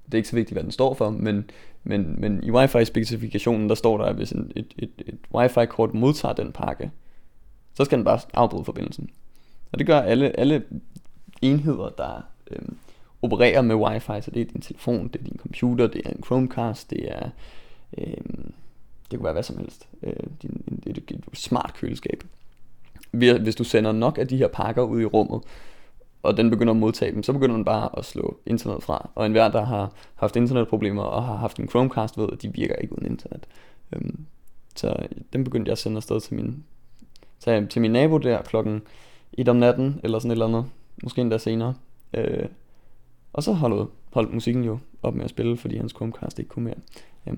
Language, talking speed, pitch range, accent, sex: Danish, 195 wpm, 110-125 Hz, native, male